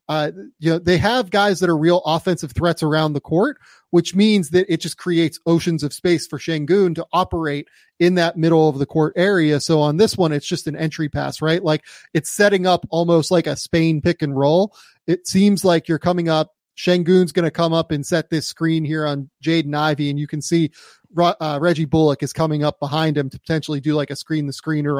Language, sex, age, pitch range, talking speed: English, male, 30-49, 150-180 Hz, 230 wpm